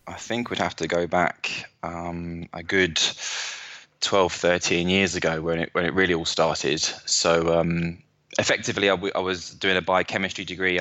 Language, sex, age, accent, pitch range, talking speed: English, male, 20-39, British, 85-95 Hz, 180 wpm